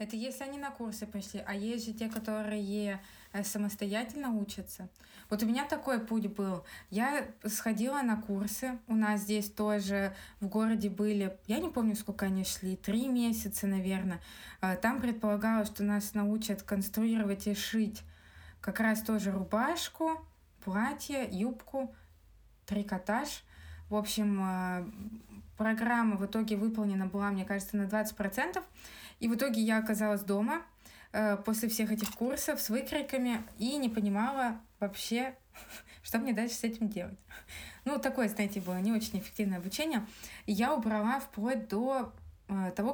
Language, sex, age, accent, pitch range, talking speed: Russian, female, 20-39, native, 200-235 Hz, 140 wpm